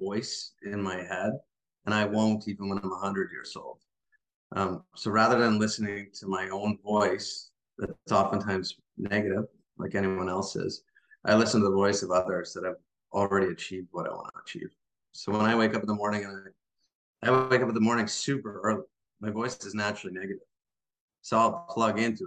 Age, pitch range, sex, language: 30-49, 95-110 Hz, male, English